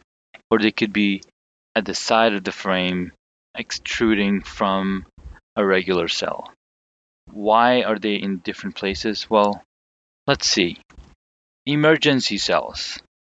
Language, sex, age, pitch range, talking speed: English, male, 30-49, 85-110 Hz, 115 wpm